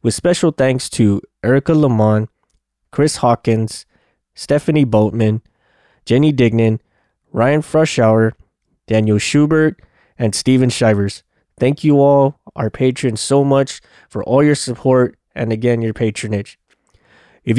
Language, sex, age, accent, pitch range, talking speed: English, male, 20-39, American, 115-145 Hz, 120 wpm